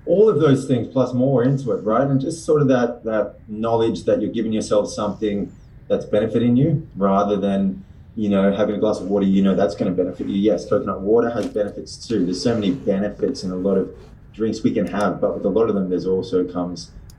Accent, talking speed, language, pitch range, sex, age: Australian, 235 wpm, English, 90-110 Hz, male, 20-39